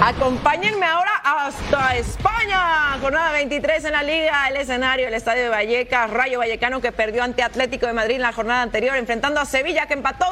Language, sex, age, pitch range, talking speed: Spanish, female, 30-49, 255-345 Hz, 185 wpm